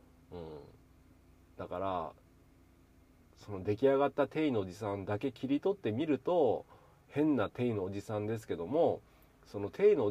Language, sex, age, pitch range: Japanese, male, 40-59, 85-115 Hz